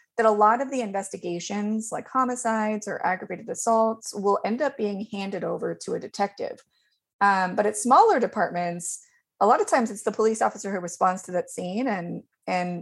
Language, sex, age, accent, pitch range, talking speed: English, female, 20-39, American, 180-235 Hz, 185 wpm